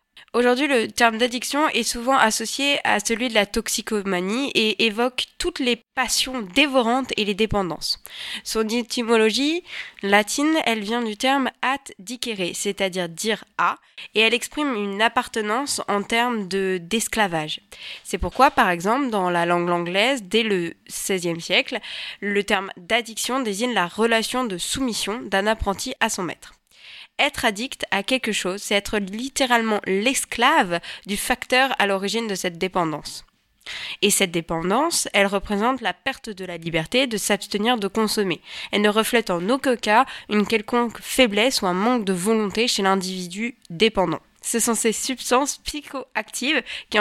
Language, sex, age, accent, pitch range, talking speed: French, female, 20-39, French, 200-250 Hz, 155 wpm